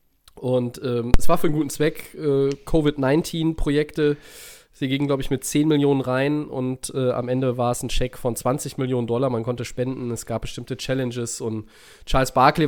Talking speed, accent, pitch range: 190 wpm, German, 125-150 Hz